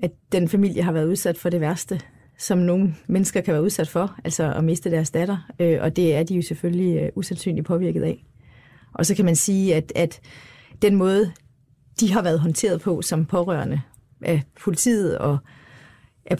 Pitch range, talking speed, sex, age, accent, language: 160-195 Hz, 185 wpm, female, 30-49, native, Danish